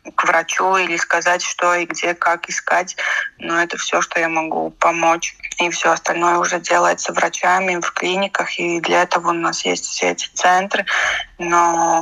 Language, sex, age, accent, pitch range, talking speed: Russian, female, 20-39, native, 165-180 Hz, 170 wpm